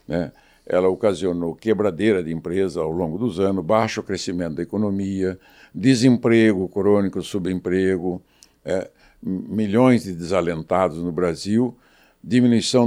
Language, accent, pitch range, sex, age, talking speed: Portuguese, Brazilian, 95-125 Hz, male, 60-79, 110 wpm